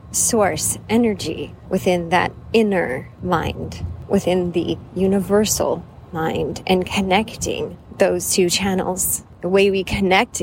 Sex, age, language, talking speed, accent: female, 30-49, English, 110 wpm, American